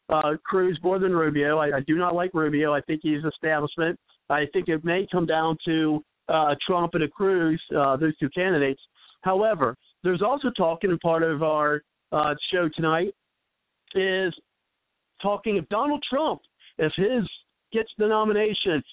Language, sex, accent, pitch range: English, male, American, 165-260 Hz